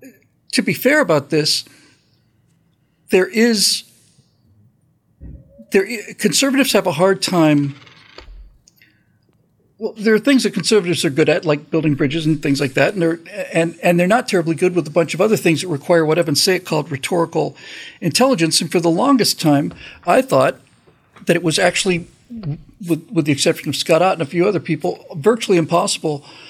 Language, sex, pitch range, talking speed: English, male, 155-200 Hz, 185 wpm